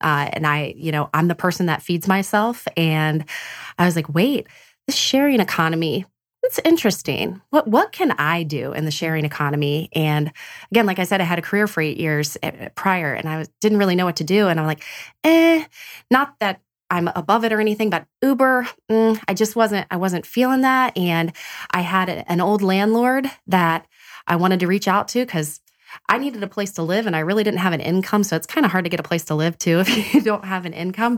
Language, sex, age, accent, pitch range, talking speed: English, female, 20-39, American, 165-225 Hz, 225 wpm